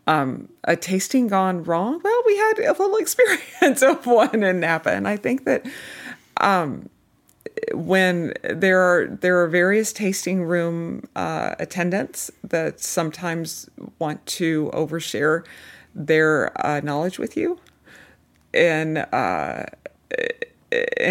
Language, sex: English, female